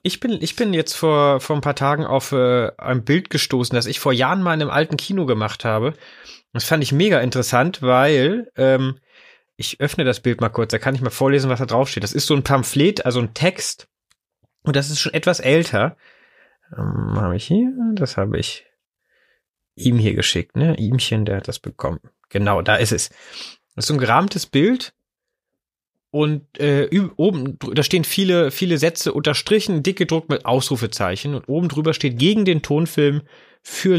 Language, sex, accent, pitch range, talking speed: German, male, German, 135-180 Hz, 190 wpm